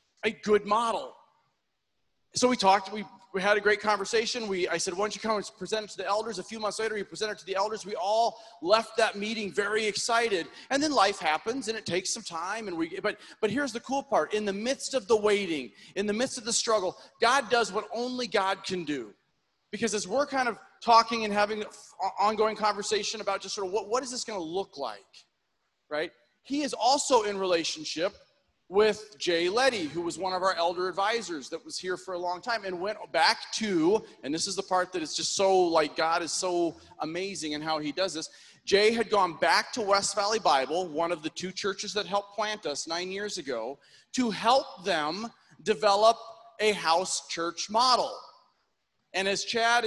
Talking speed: 215 wpm